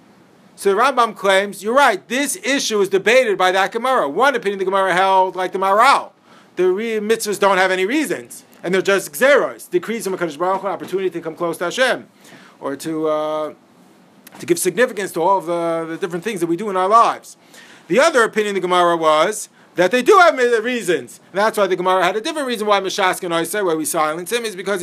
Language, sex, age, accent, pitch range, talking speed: English, male, 40-59, American, 170-225 Hz, 215 wpm